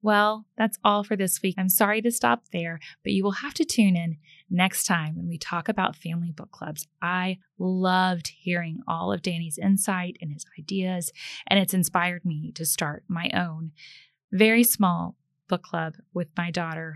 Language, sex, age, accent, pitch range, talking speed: English, female, 10-29, American, 165-200 Hz, 185 wpm